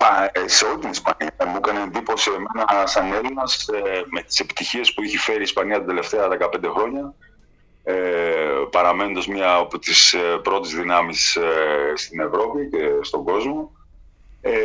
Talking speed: 135 wpm